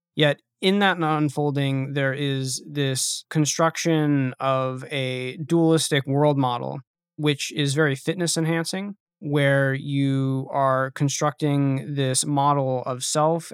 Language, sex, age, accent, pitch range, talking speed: English, male, 20-39, American, 135-155 Hz, 105 wpm